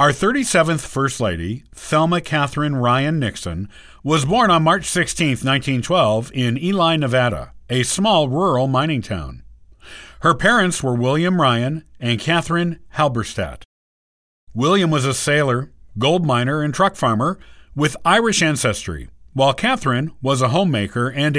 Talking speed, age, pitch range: 135 wpm, 50-69, 110-165 Hz